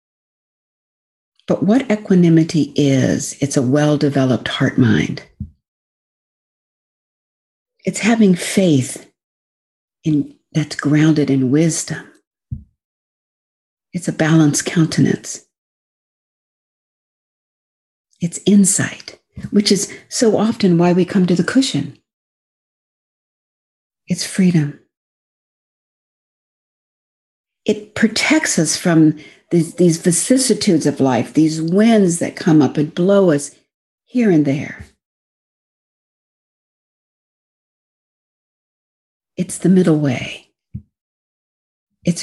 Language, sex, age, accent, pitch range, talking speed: English, female, 50-69, American, 150-200 Hz, 85 wpm